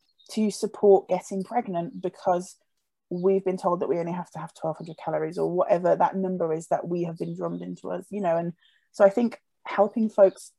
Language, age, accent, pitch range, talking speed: English, 20-39, British, 175-215 Hz, 205 wpm